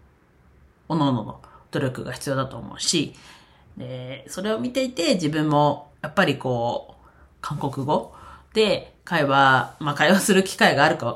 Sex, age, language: female, 40-59, Japanese